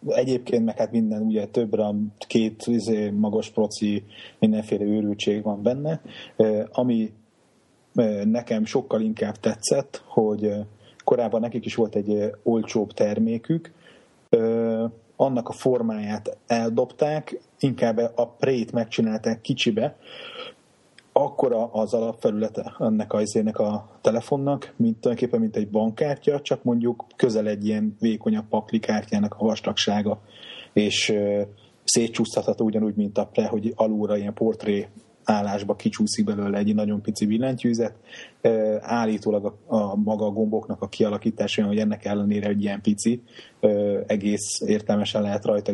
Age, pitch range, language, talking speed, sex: 30-49, 105-120 Hz, Hungarian, 120 wpm, male